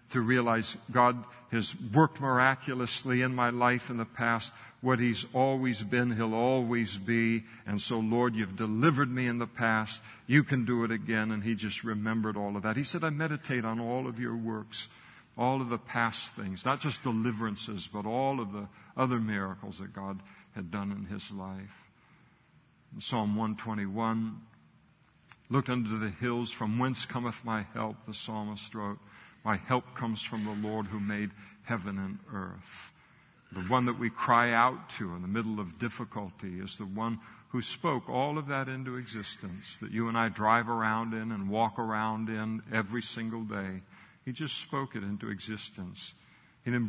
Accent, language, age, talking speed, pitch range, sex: American, English, 60-79, 180 wpm, 105-125 Hz, male